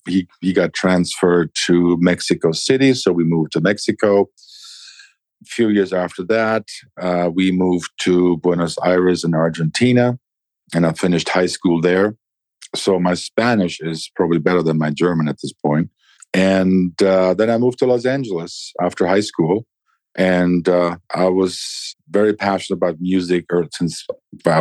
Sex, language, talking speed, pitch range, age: male, English, 155 wpm, 85-100 Hz, 50-69